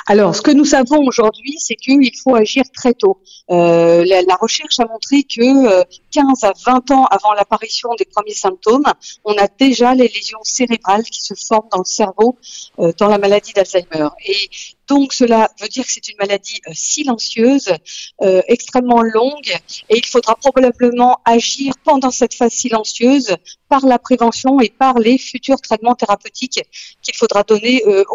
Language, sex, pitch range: French, female, 200-250 Hz